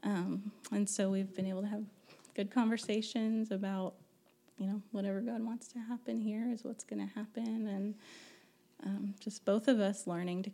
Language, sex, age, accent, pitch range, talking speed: English, female, 20-39, American, 195-220 Hz, 180 wpm